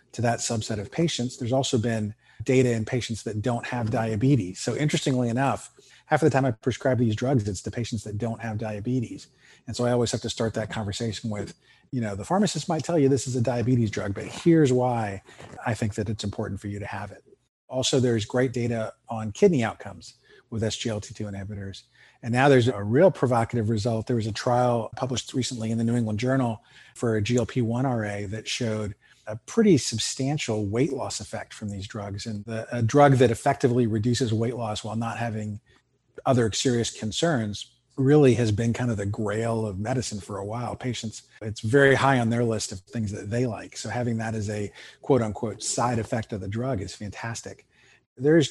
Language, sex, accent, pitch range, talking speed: English, male, American, 110-125 Hz, 205 wpm